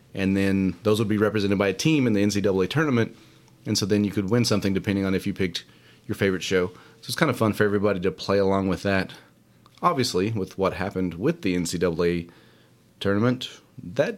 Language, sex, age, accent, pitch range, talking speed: English, male, 30-49, American, 95-120 Hz, 205 wpm